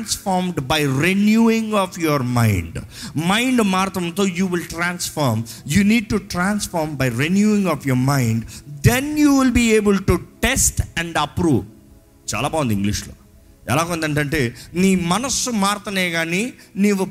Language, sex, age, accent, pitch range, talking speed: Telugu, male, 50-69, native, 140-215 Hz, 155 wpm